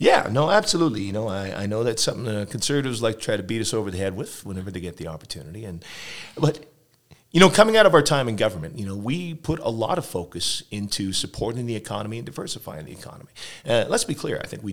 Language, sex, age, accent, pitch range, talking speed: English, male, 40-59, American, 95-125 Hz, 250 wpm